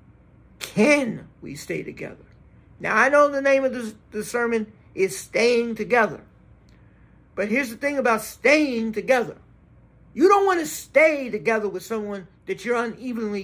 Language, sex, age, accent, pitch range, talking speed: English, male, 50-69, American, 210-260 Hz, 150 wpm